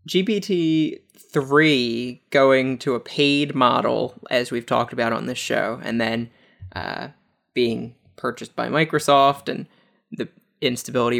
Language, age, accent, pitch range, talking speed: English, 20-39, American, 120-140 Hz, 125 wpm